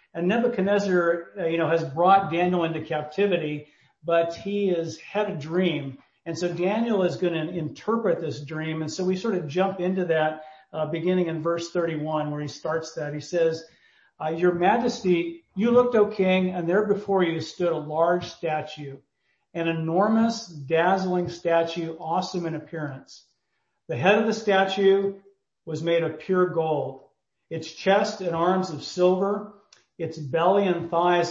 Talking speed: 165 wpm